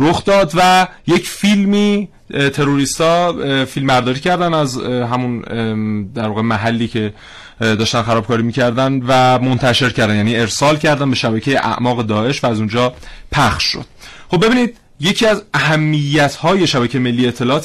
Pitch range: 115-140 Hz